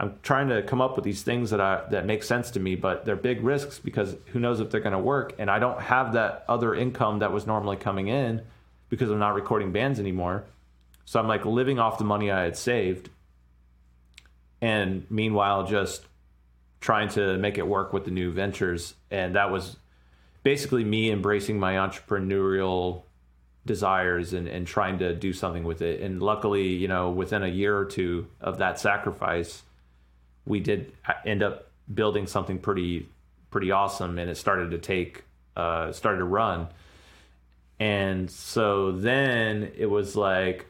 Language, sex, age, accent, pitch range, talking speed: English, male, 30-49, American, 90-105 Hz, 175 wpm